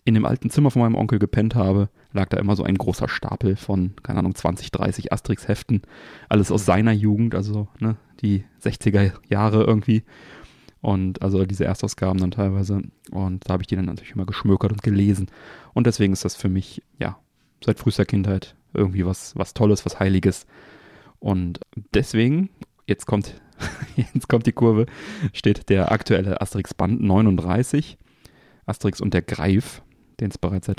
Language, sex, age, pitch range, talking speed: German, male, 30-49, 95-110 Hz, 165 wpm